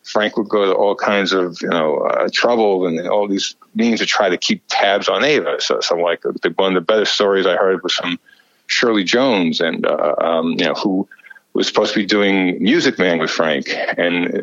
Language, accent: English, American